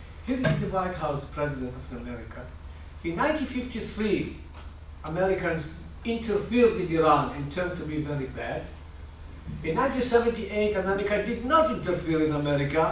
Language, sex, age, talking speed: English, male, 50-69, 130 wpm